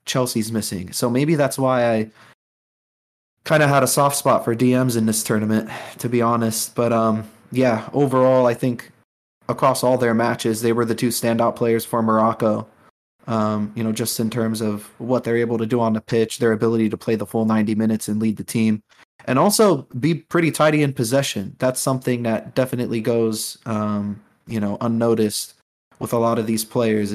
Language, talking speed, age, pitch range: English, 195 wpm, 20-39, 110-125 Hz